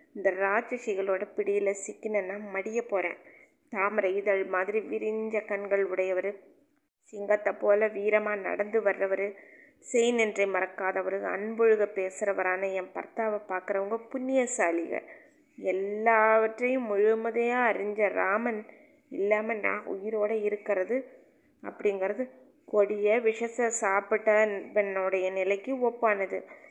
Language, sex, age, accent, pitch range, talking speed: Tamil, female, 20-39, native, 200-230 Hz, 90 wpm